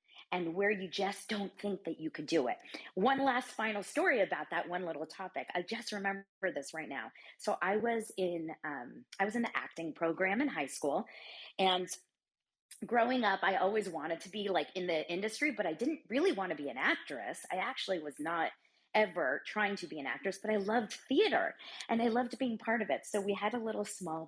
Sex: female